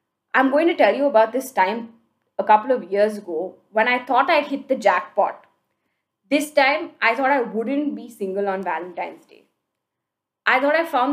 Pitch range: 205-290 Hz